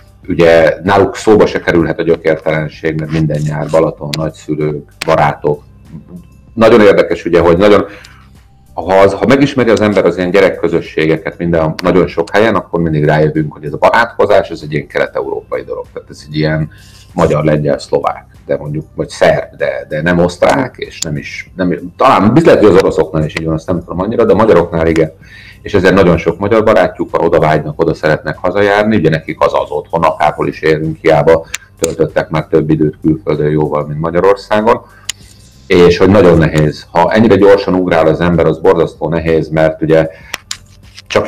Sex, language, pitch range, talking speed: male, Hungarian, 80-105 Hz, 175 wpm